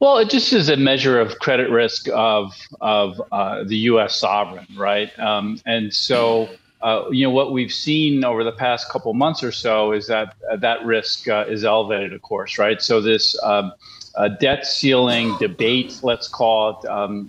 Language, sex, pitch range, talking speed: English, male, 110-135 Hz, 185 wpm